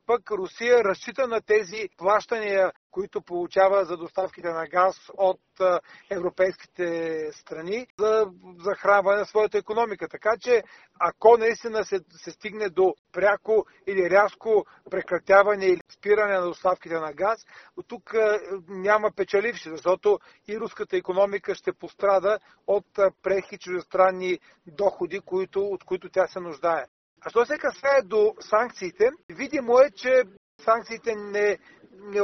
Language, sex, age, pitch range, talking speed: Bulgarian, male, 40-59, 180-215 Hz, 130 wpm